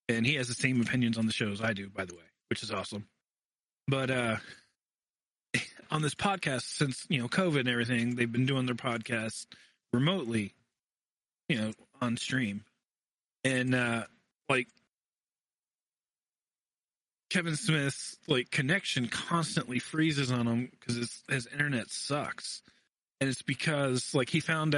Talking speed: 145 wpm